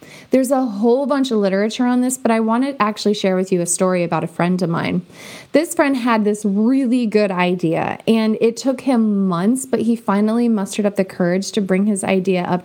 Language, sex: English, female